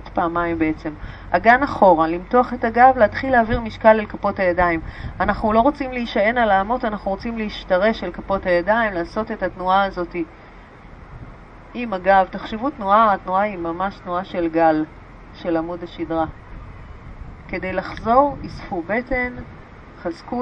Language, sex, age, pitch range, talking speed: Hebrew, female, 30-49, 180-235 Hz, 140 wpm